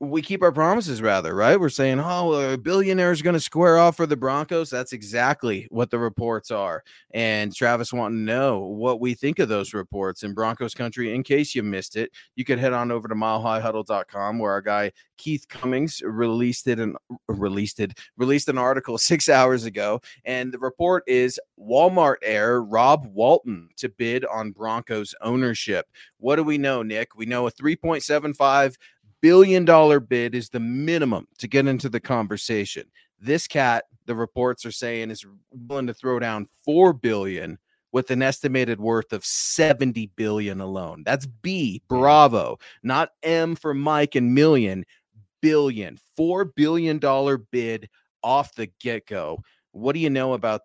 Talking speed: 165 wpm